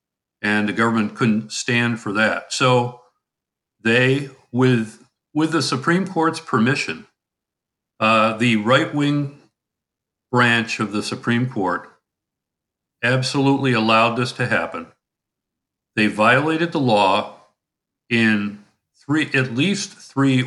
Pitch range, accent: 110-135 Hz, American